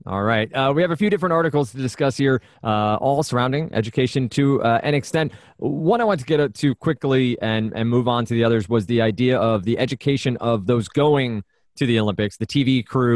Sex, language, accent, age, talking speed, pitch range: male, English, American, 20-39, 225 wpm, 110-135 Hz